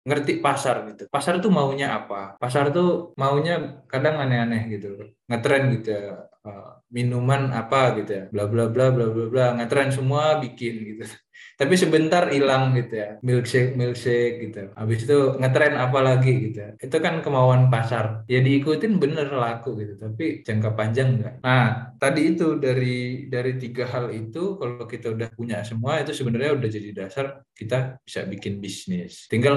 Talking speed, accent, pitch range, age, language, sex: 160 wpm, native, 110-135 Hz, 20-39, Indonesian, male